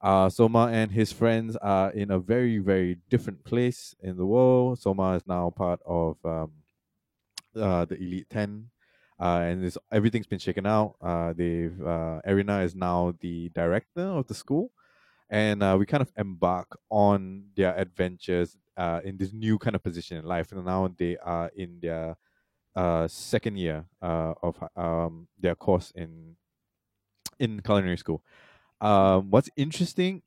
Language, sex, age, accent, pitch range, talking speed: English, male, 20-39, Malaysian, 85-110 Hz, 165 wpm